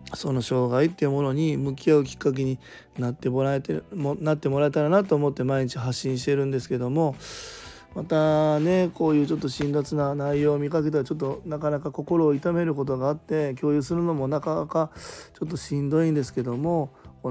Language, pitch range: Japanese, 125-160 Hz